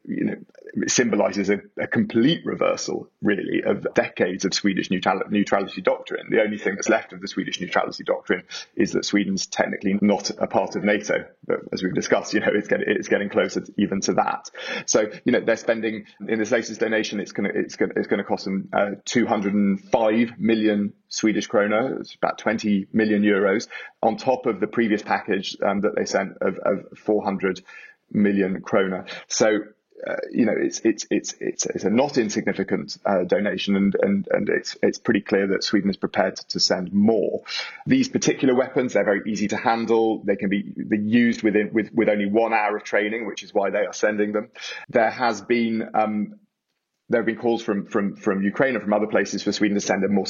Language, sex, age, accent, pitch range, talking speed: English, male, 30-49, British, 100-115 Hz, 205 wpm